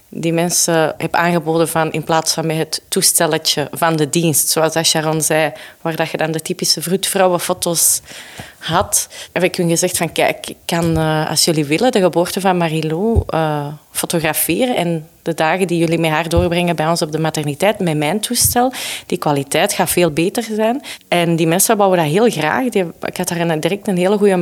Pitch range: 165-200 Hz